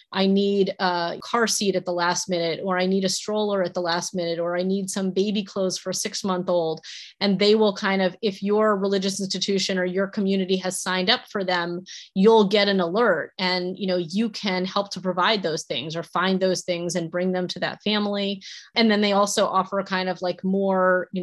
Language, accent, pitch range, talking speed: English, American, 185-225 Hz, 230 wpm